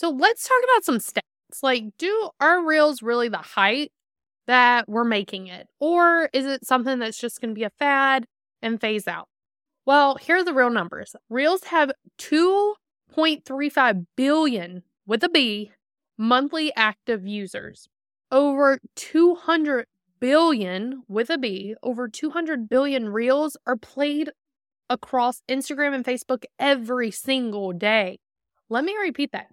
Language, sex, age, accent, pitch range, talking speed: English, female, 20-39, American, 235-295 Hz, 140 wpm